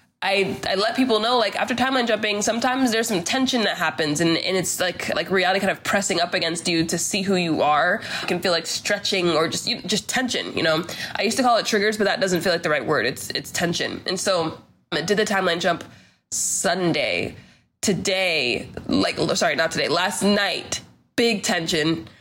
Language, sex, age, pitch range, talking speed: English, female, 20-39, 175-225 Hz, 210 wpm